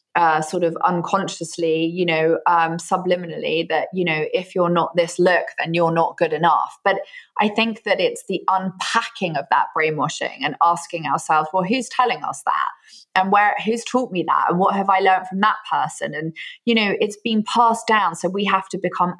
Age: 20-39